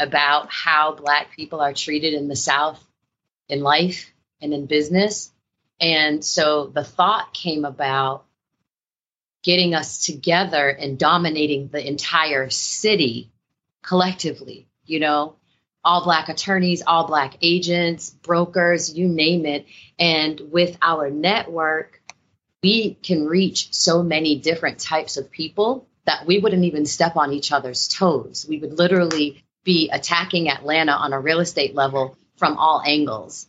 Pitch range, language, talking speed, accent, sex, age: 145-180 Hz, English, 140 wpm, American, female, 30-49